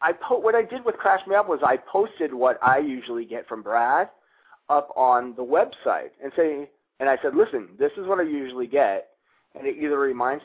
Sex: male